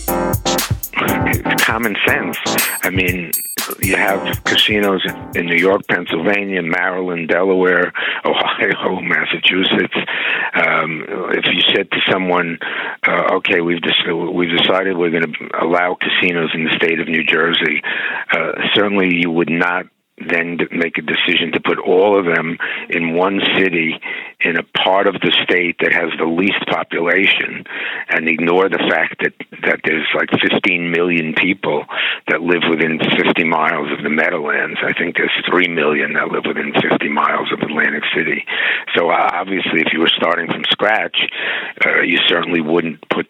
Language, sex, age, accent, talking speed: English, male, 60-79, American, 155 wpm